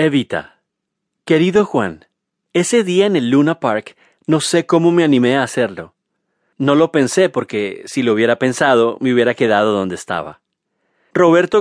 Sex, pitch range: male, 115-165 Hz